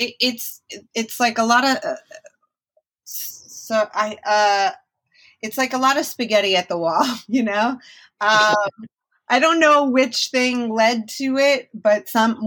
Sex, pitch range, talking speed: female, 175-230 Hz, 150 wpm